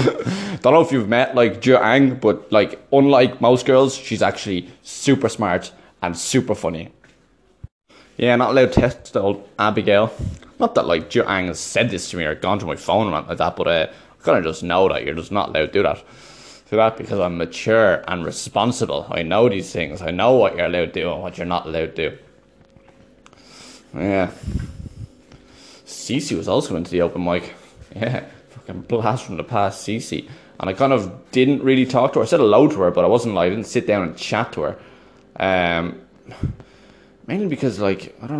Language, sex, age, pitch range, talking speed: English, male, 20-39, 90-130 Hz, 210 wpm